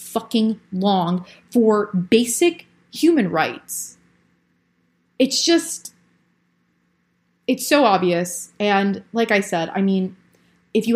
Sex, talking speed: female, 105 wpm